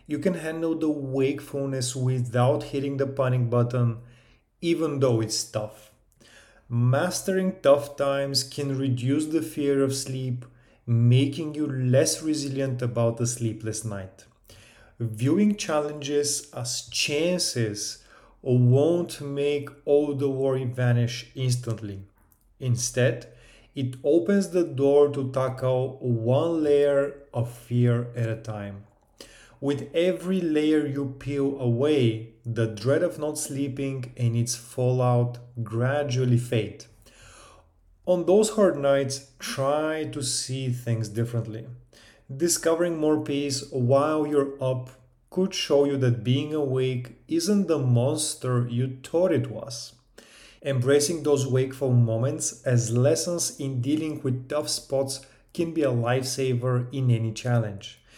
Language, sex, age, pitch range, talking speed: English, male, 30-49, 120-145 Hz, 120 wpm